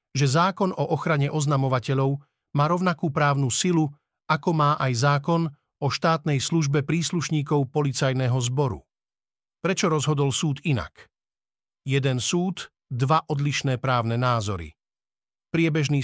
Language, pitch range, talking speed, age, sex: Slovak, 130-155 Hz, 110 wpm, 50-69, male